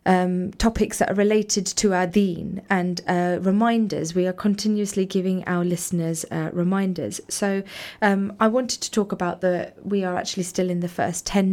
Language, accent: English, British